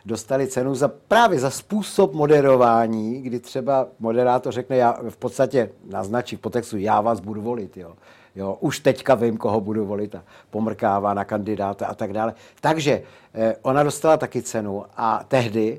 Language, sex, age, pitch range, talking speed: Czech, male, 60-79, 110-140 Hz, 165 wpm